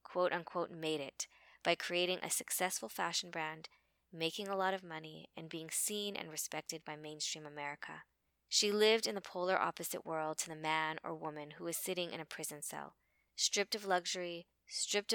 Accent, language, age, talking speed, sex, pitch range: American, English, 20-39, 180 wpm, female, 155-185 Hz